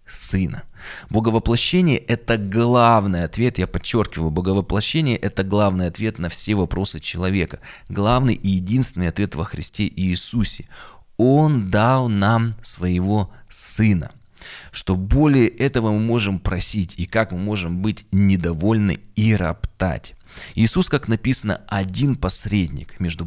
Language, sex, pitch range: Russian, male, 90-115 Hz